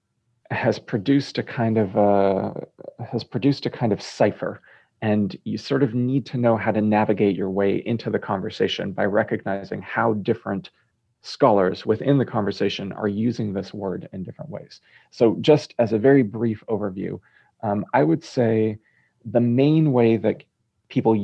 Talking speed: 165 wpm